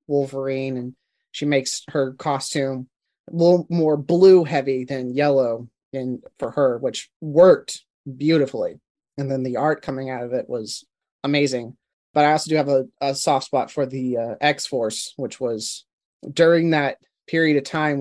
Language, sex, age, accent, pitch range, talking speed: English, male, 30-49, American, 130-160 Hz, 165 wpm